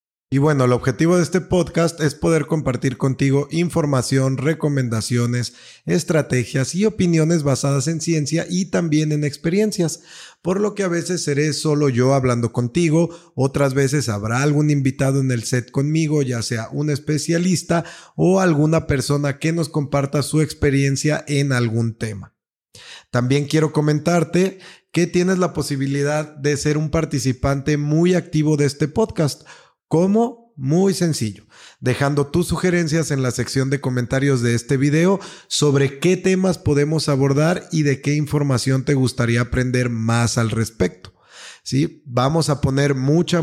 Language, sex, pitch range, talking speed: Spanish, male, 135-165 Hz, 145 wpm